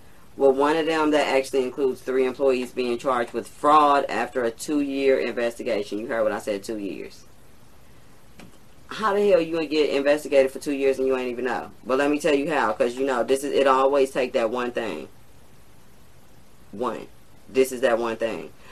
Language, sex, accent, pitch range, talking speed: English, female, American, 115-135 Hz, 210 wpm